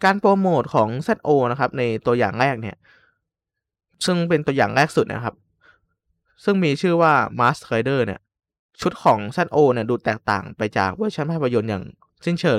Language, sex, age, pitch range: Thai, male, 20-39, 110-160 Hz